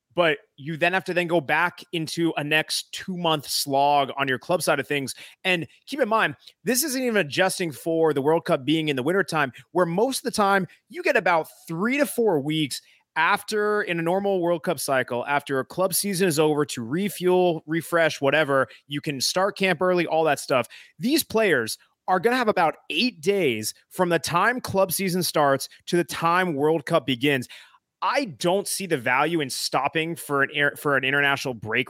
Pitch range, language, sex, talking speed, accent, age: 140-190 Hz, English, male, 200 wpm, American, 30-49